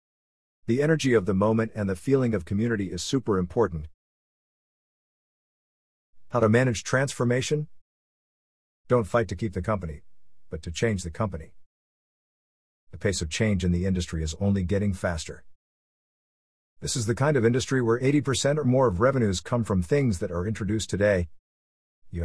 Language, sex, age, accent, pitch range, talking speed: English, male, 50-69, American, 85-125 Hz, 160 wpm